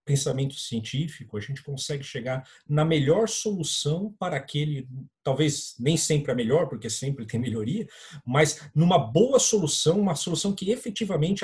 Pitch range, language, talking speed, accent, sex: 130-175 Hz, Portuguese, 145 wpm, Brazilian, male